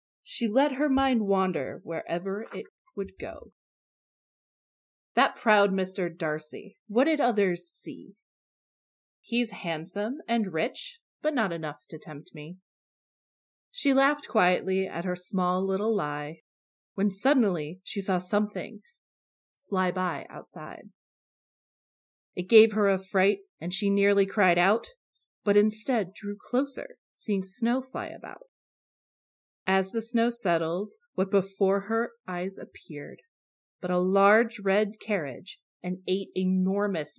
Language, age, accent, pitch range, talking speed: English, 30-49, American, 180-230 Hz, 125 wpm